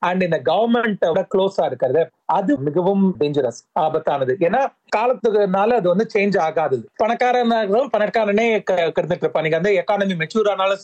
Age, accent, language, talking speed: 30-49, native, Tamil, 150 wpm